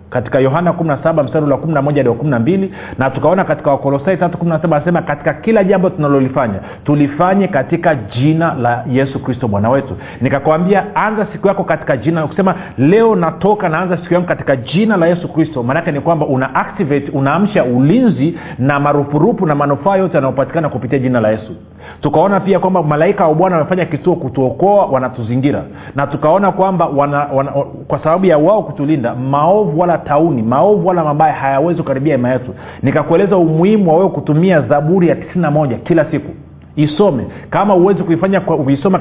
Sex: male